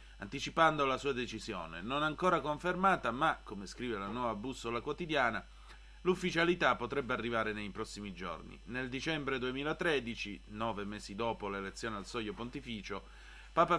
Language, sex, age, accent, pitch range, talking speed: Italian, male, 30-49, native, 115-150 Hz, 135 wpm